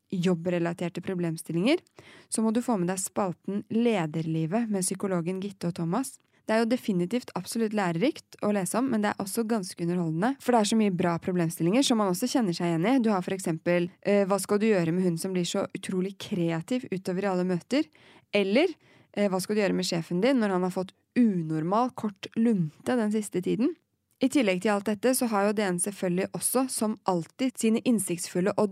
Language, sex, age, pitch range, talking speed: English, female, 20-39, 180-225 Hz, 205 wpm